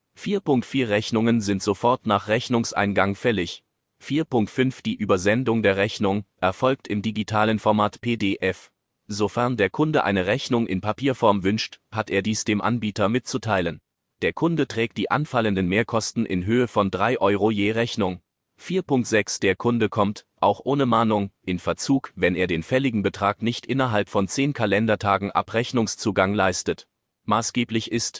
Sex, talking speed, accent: male, 140 wpm, German